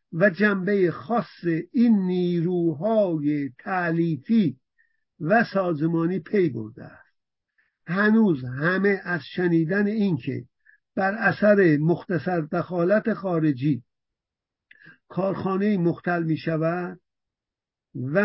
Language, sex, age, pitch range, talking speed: English, male, 50-69, 155-195 Hz, 85 wpm